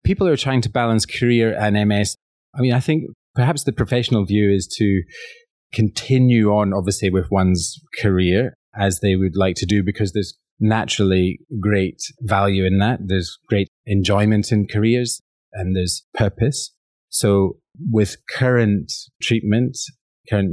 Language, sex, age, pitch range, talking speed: English, male, 30-49, 95-115 Hz, 150 wpm